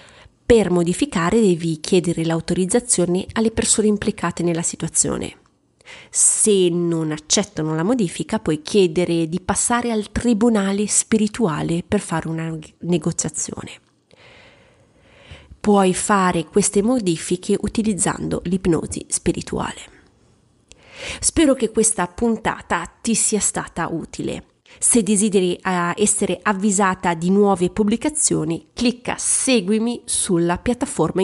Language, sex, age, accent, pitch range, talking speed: Italian, female, 30-49, native, 180-230 Hz, 100 wpm